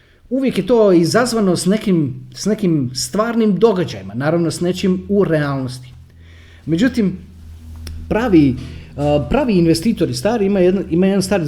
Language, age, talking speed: Croatian, 30-49, 120 wpm